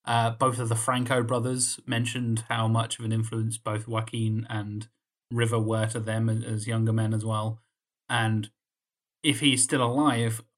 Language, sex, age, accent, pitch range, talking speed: English, male, 30-49, British, 110-130 Hz, 165 wpm